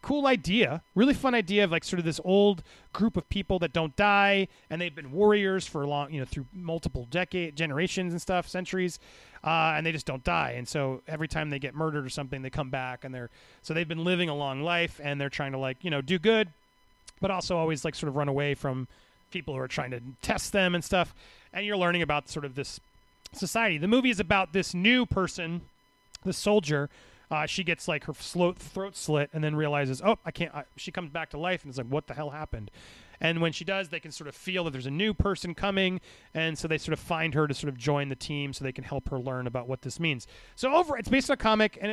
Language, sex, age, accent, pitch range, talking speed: English, male, 30-49, American, 150-205 Hz, 250 wpm